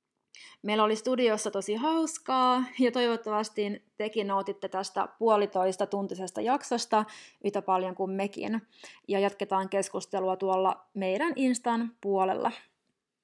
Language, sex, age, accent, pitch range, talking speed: Finnish, female, 20-39, native, 190-230 Hz, 110 wpm